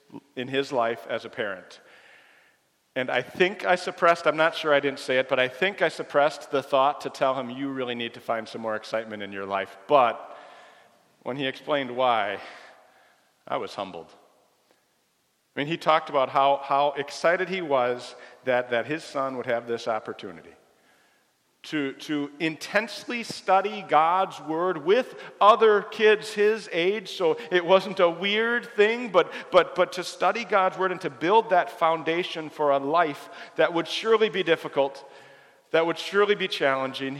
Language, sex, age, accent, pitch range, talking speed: English, male, 40-59, American, 125-180 Hz, 175 wpm